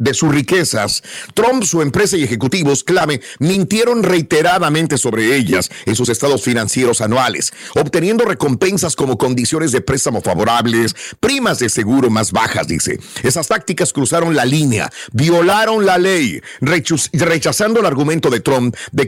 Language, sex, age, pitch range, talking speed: Spanish, male, 50-69, 130-195 Hz, 140 wpm